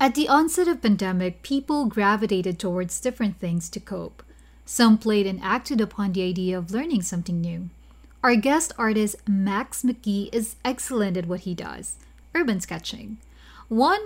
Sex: female